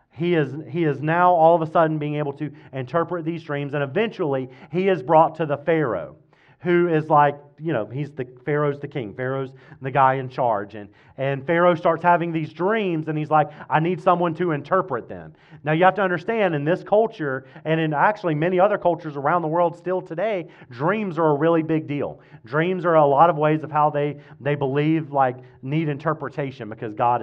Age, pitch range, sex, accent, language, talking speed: 40-59, 145-175 Hz, male, American, English, 210 wpm